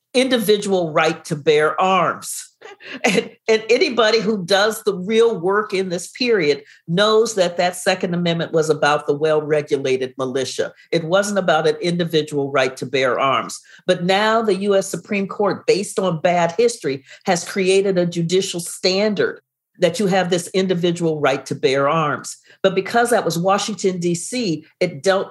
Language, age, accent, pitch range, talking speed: English, 50-69, American, 175-220 Hz, 160 wpm